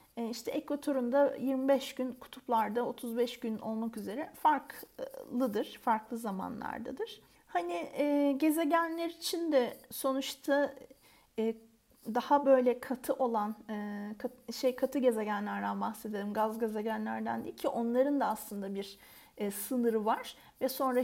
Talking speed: 120 wpm